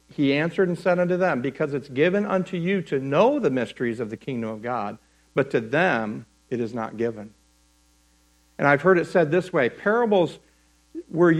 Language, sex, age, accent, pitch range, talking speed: English, male, 60-79, American, 115-170 Hz, 190 wpm